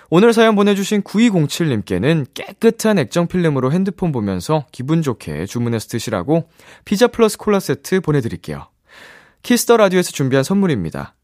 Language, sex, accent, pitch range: Korean, male, native, 120-185 Hz